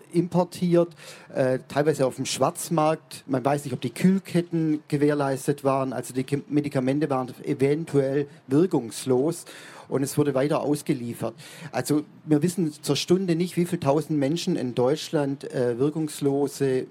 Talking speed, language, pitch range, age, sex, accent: 130 wpm, German, 130-155 Hz, 40-59, male, German